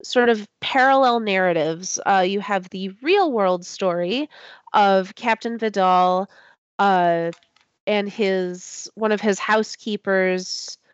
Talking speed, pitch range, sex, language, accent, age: 115 wpm, 185-225 Hz, female, English, American, 30-49